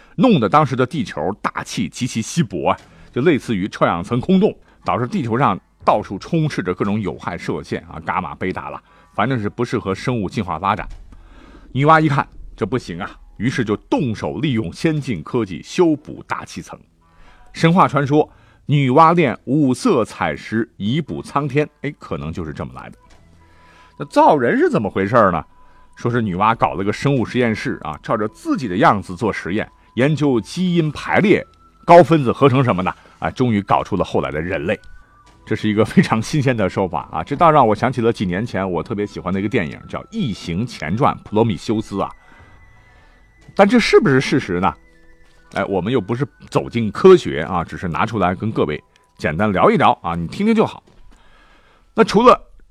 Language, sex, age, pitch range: Chinese, male, 50-69, 95-150 Hz